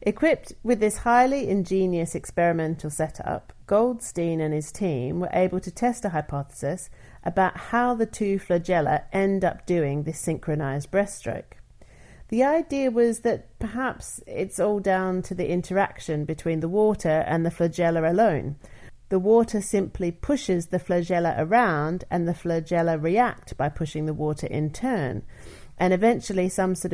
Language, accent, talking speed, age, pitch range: English, British, 150 wpm, 40-59, 155-205 Hz